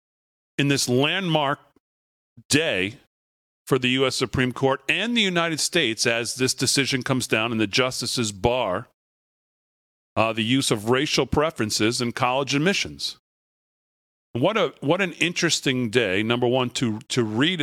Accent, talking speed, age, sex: American, 145 wpm, 40-59, male